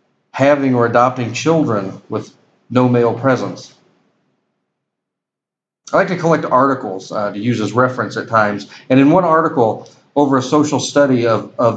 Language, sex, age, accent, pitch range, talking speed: English, male, 40-59, American, 120-145 Hz, 155 wpm